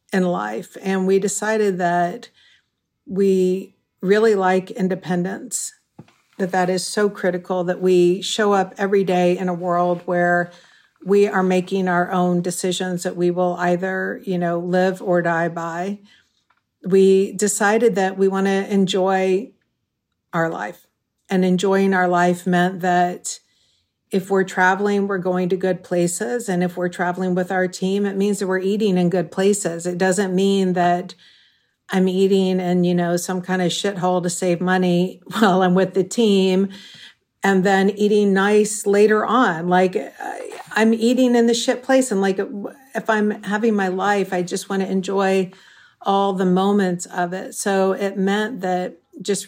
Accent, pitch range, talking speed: American, 180-200 Hz, 165 wpm